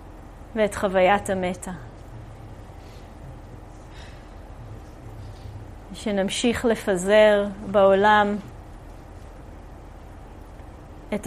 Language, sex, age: English, female, 30-49